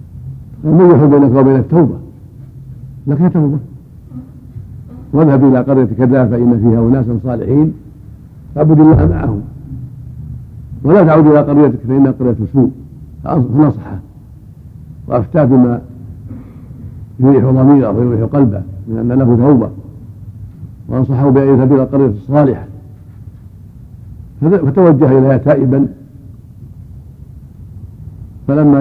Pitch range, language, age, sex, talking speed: 115-140 Hz, Arabic, 70-89, male, 95 wpm